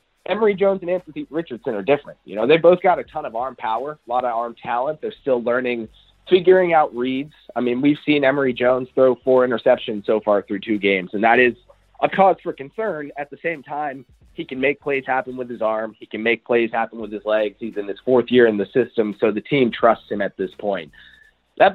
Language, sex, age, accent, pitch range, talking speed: English, male, 30-49, American, 115-175 Hz, 235 wpm